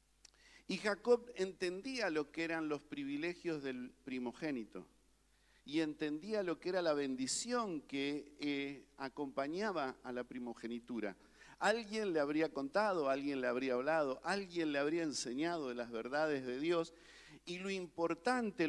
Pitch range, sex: 135-220 Hz, male